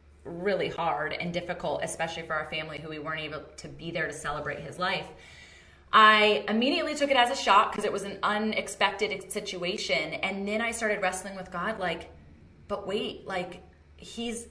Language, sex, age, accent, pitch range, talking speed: English, female, 30-49, American, 175-205 Hz, 180 wpm